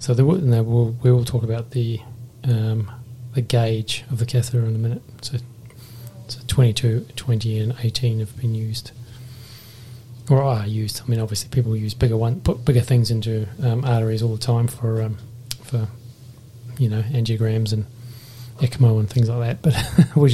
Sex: male